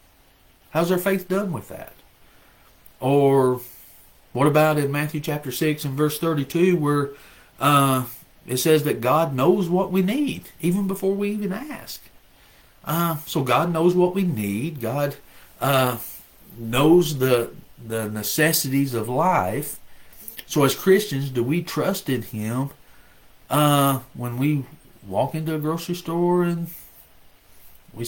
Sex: male